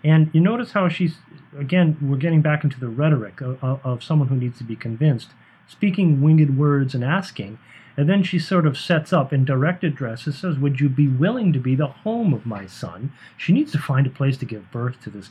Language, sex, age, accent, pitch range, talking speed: English, male, 40-59, American, 130-165 Hz, 225 wpm